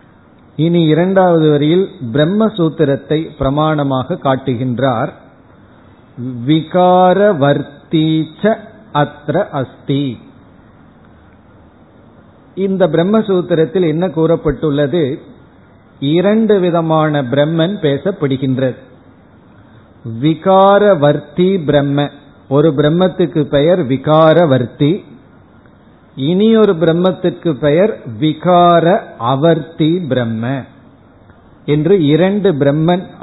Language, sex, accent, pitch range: Tamil, male, native, 135-180 Hz